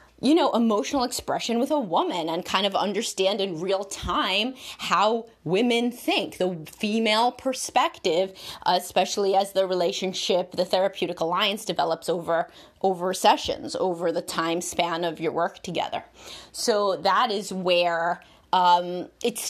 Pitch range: 175-210 Hz